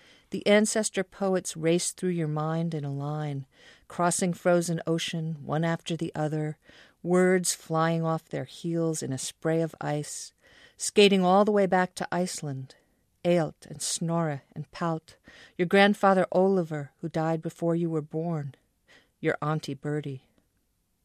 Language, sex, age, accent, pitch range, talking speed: English, female, 50-69, American, 145-180 Hz, 145 wpm